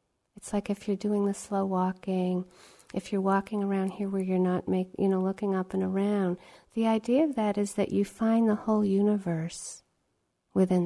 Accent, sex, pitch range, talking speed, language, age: American, female, 185-215 Hz, 195 wpm, English, 40-59